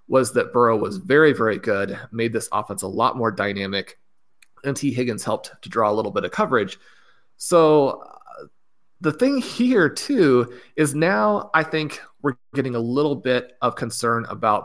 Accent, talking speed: American, 175 wpm